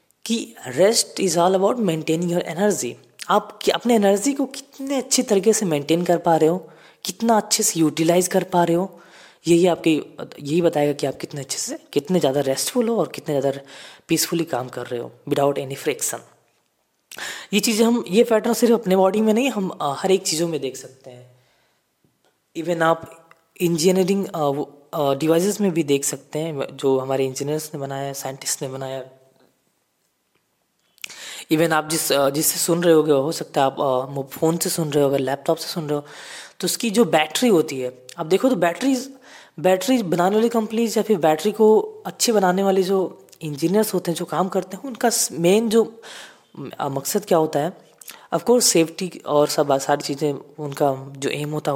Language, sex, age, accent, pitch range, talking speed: Hindi, female, 20-39, native, 145-210 Hz, 180 wpm